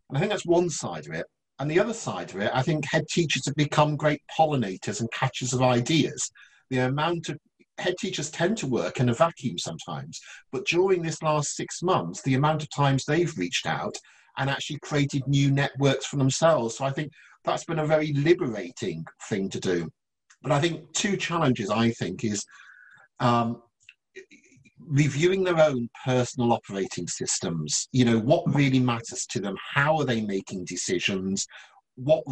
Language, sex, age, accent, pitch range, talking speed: English, male, 50-69, British, 120-150 Hz, 175 wpm